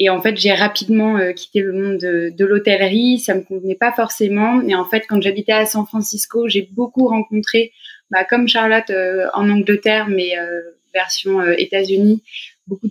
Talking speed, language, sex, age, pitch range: 190 wpm, French, female, 20-39, 190-225 Hz